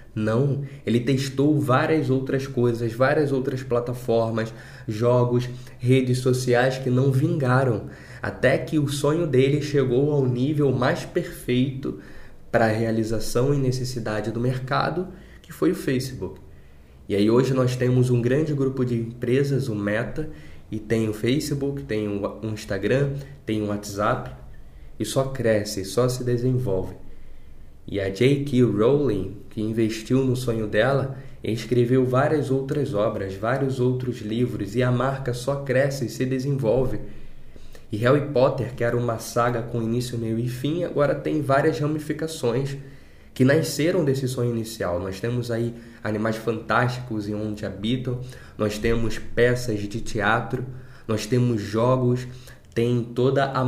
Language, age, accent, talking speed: Portuguese, 20-39, Brazilian, 145 wpm